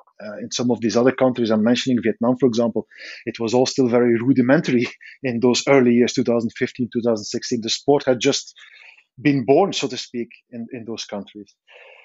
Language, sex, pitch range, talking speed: English, male, 120-145 Hz, 185 wpm